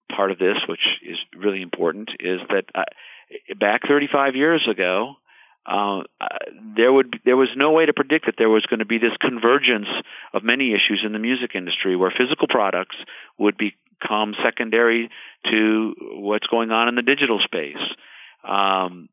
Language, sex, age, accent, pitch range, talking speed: English, male, 50-69, American, 100-120 Hz, 170 wpm